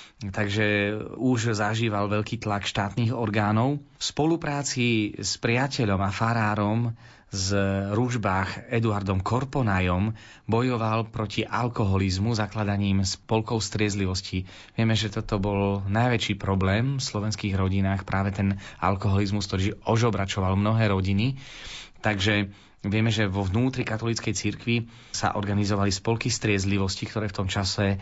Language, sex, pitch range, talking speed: Slovak, male, 100-115 Hz, 115 wpm